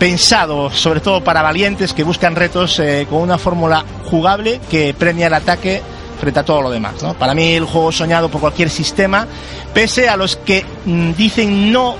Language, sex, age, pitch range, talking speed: French, male, 40-59, 145-180 Hz, 185 wpm